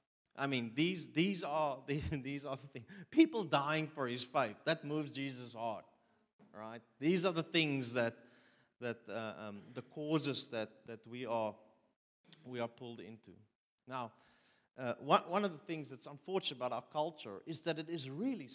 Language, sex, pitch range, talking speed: English, male, 120-165 Hz, 170 wpm